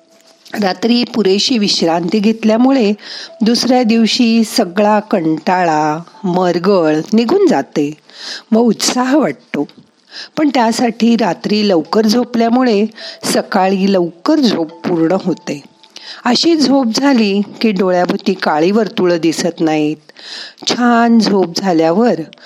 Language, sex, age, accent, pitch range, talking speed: Marathi, female, 50-69, native, 180-240 Hz, 100 wpm